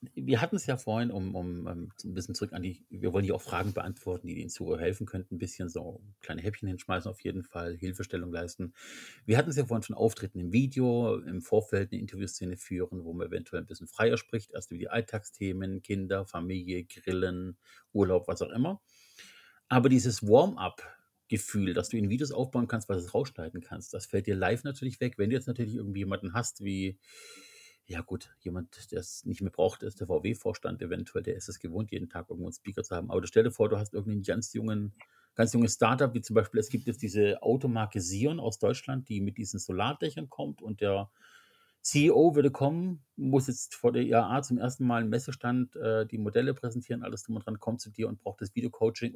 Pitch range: 95-120 Hz